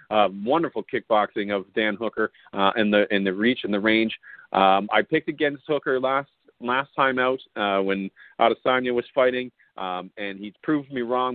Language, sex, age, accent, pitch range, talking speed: English, male, 40-59, American, 110-130 Hz, 185 wpm